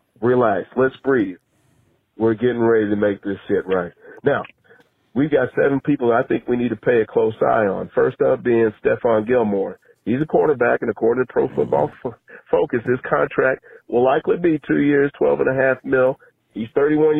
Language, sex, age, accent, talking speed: English, male, 40-59, American, 180 wpm